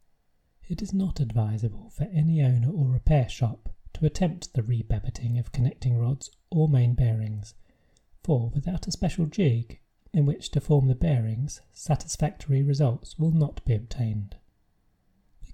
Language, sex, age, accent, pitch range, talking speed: English, male, 30-49, British, 115-150 Hz, 145 wpm